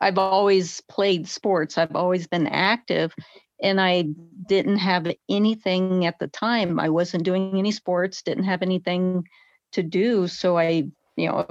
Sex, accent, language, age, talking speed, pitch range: female, American, English, 40-59, 155 wpm, 175-195 Hz